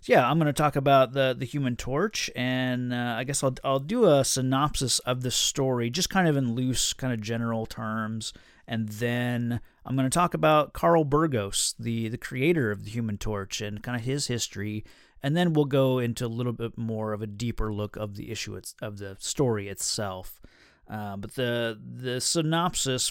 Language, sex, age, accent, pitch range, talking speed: English, male, 30-49, American, 110-135 Hz, 205 wpm